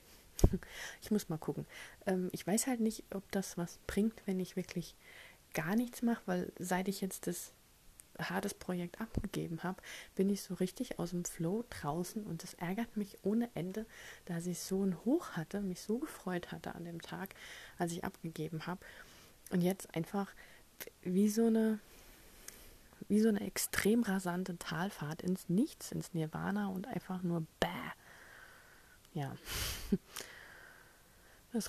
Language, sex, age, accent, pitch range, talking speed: German, female, 30-49, German, 170-205 Hz, 150 wpm